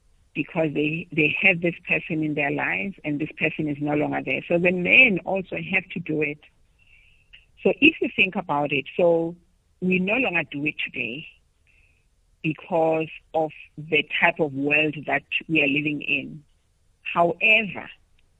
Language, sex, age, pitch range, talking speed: English, female, 60-79, 150-180 Hz, 160 wpm